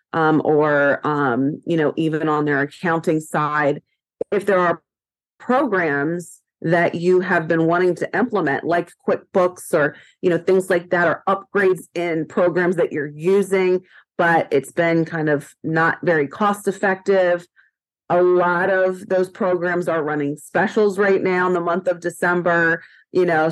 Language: English